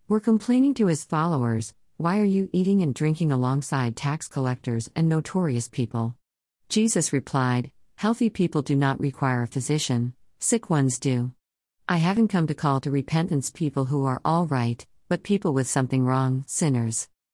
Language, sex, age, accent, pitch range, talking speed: English, female, 50-69, American, 125-165 Hz, 165 wpm